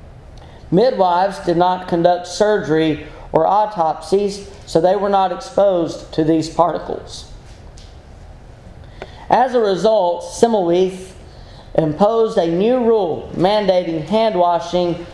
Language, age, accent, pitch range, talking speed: English, 40-59, American, 155-195 Hz, 100 wpm